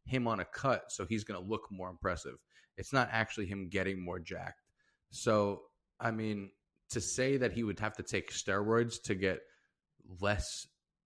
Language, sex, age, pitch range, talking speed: English, male, 20-39, 90-110 Hz, 180 wpm